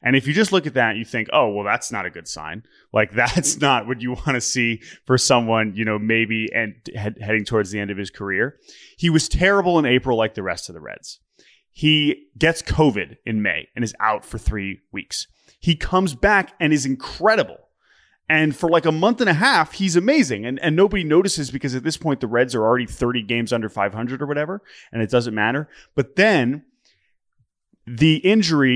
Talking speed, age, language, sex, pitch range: 210 wpm, 20-39, English, male, 115-155 Hz